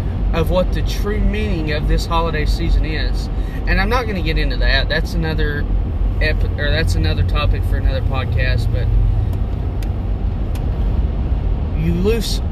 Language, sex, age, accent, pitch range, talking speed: English, male, 30-49, American, 75-85 Hz, 150 wpm